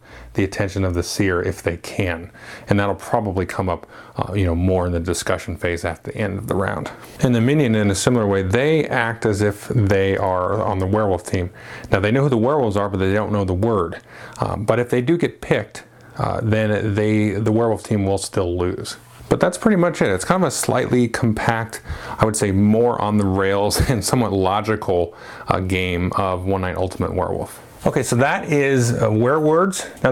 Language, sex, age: English, male, 30-49